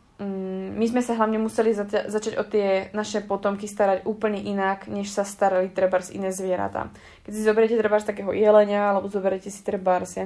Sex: female